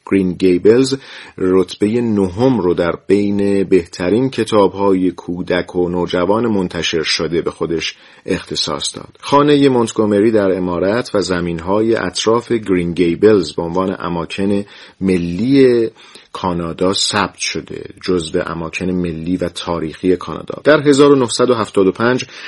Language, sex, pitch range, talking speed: Persian, male, 90-115 Hz, 110 wpm